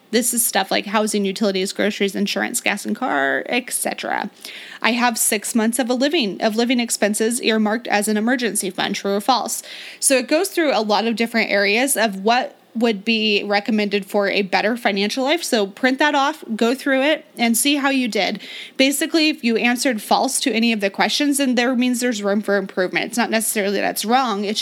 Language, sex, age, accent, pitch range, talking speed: English, female, 20-39, American, 210-260 Hz, 200 wpm